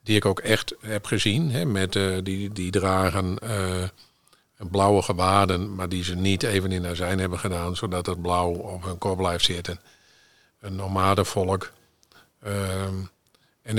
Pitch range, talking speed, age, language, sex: 90-110 Hz, 155 wpm, 50-69, Dutch, male